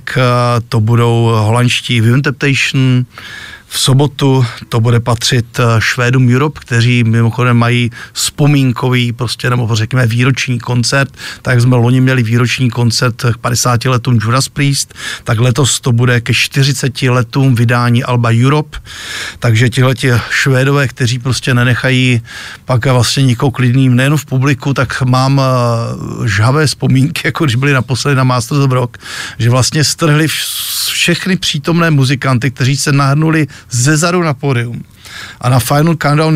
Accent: native